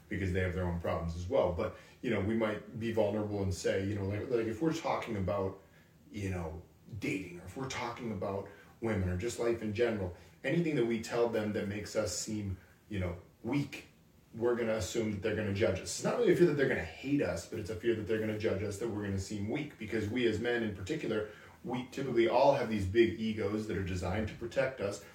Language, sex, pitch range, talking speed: English, male, 95-115 Hz, 255 wpm